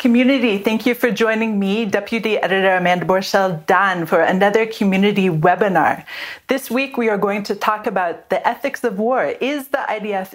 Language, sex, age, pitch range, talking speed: English, female, 40-59, 185-235 Hz, 170 wpm